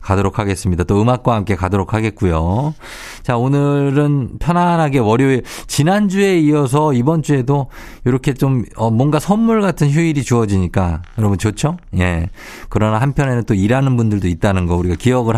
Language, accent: Korean, native